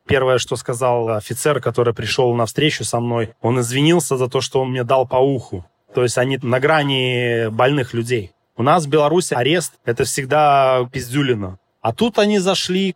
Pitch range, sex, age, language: 120-150 Hz, male, 20-39, Russian